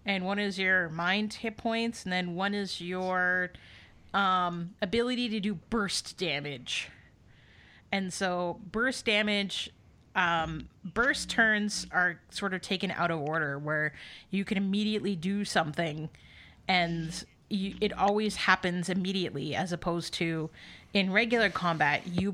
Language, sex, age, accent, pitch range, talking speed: English, female, 30-49, American, 165-200 Hz, 135 wpm